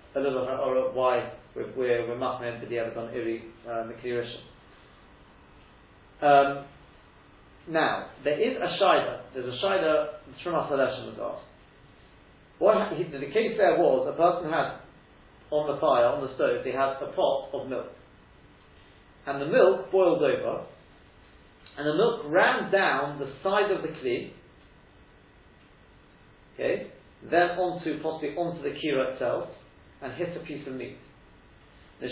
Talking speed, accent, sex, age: 145 wpm, British, male, 40-59